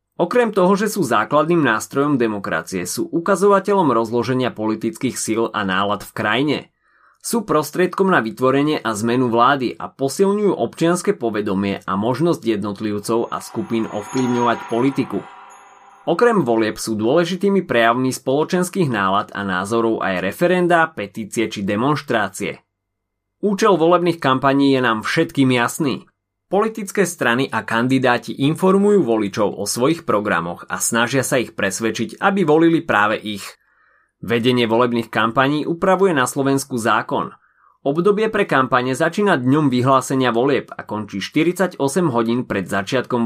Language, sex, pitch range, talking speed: Slovak, male, 115-190 Hz, 130 wpm